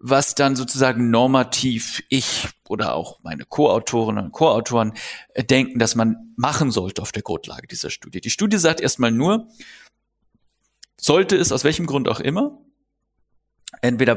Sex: male